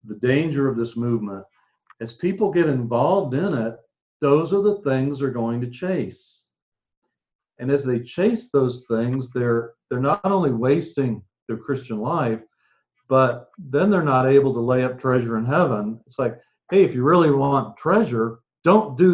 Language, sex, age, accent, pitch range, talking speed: English, male, 50-69, American, 115-140 Hz, 170 wpm